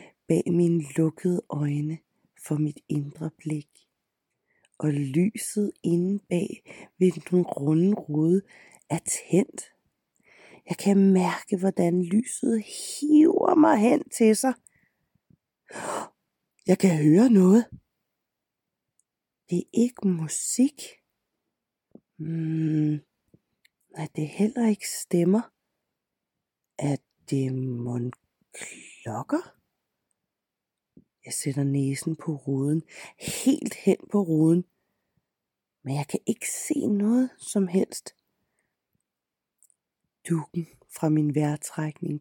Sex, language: female, Danish